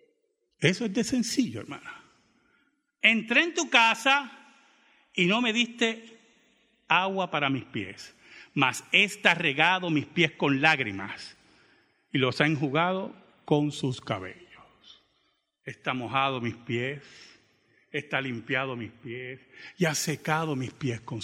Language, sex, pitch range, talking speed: Spanish, male, 130-215 Hz, 125 wpm